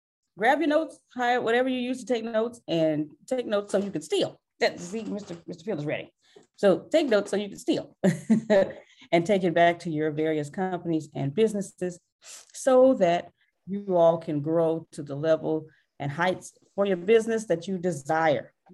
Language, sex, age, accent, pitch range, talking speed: English, female, 30-49, American, 165-235 Hz, 180 wpm